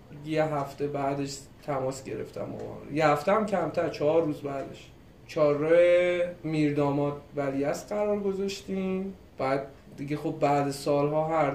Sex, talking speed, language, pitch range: male, 125 wpm, Persian, 145-165 Hz